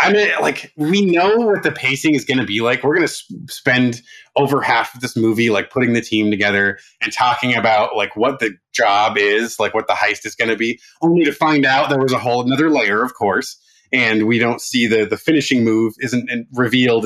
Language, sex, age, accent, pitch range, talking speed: English, male, 30-49, American, 110-140 Hz, 230 wpm